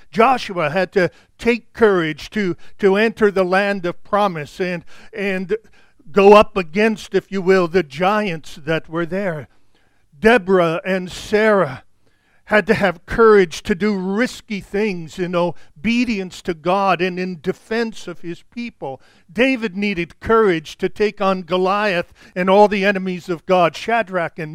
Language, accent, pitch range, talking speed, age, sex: English, American, 175-210 Hz, 150 wpm, 50-69, male